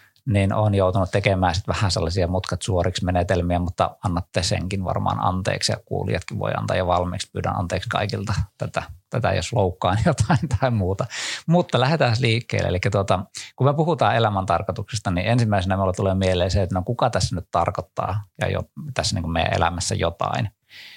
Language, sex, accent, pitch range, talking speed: Finnish, male, native, 90-115 Hz, 170 wpm